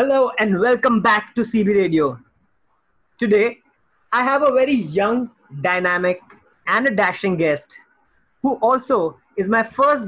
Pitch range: 180-235 Hz